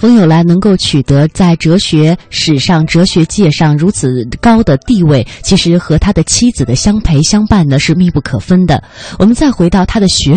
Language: Chinese